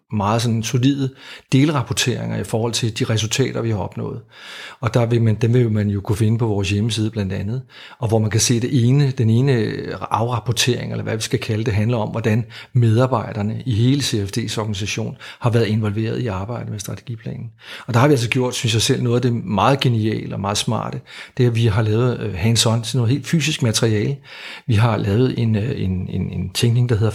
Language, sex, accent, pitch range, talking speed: Danish, male, native, 110-130 Hz, 210 wpm